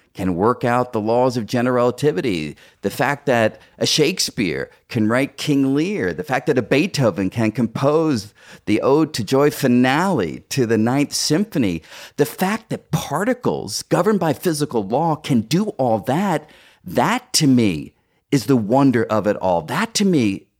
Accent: American